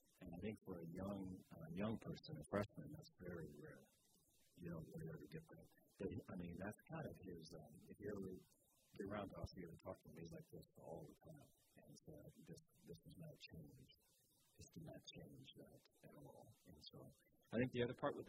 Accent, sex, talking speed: American, male, 215 wpm